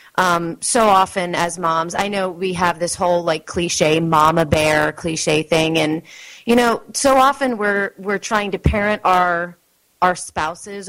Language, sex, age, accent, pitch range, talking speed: English, female, 30-49, American, 155-185 Hz, 170 wpm